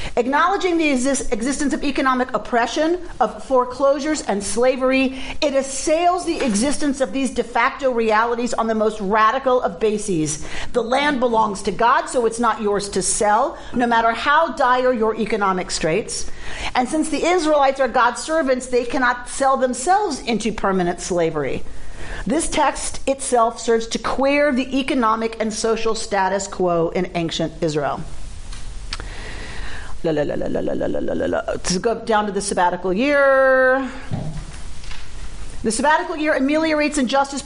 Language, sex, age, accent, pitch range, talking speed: English, female, 40-59, American, 215-285 Hz, 135 wpm